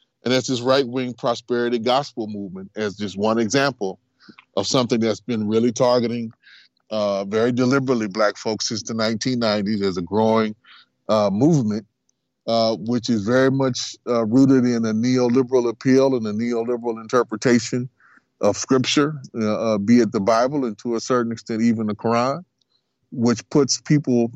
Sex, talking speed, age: male, 160 wpm, 30-49